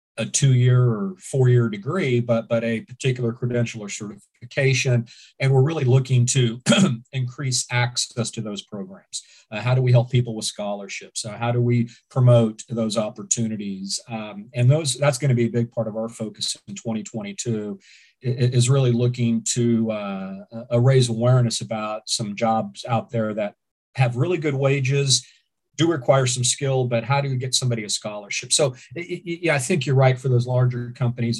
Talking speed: 175 wpm